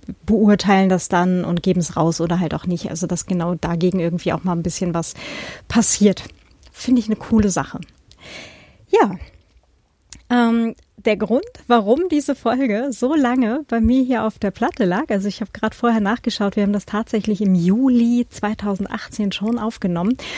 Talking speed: 170 wpm